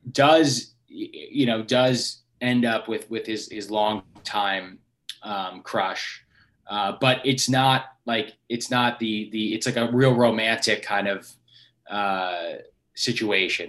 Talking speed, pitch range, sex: 140 wpm, 100-120 Hz, male